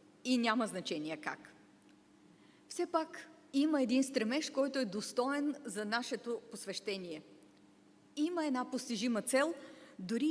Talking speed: 115 wpm